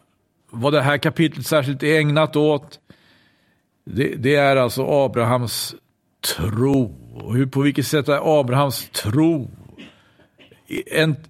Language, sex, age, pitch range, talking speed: Swedish, male, 50-69, 130-185 Hz, 120 wpm